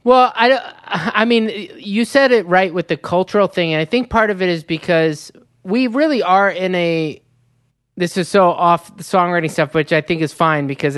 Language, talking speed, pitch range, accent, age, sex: English, 210 wpm, 155-195 Hz, American, 20-39, male